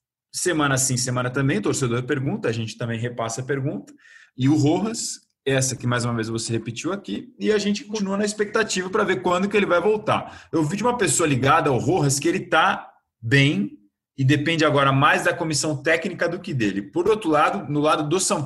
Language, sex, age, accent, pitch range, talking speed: Portuguese, male, 20-39, Brazilian, 120-160 Hz, 215 wpm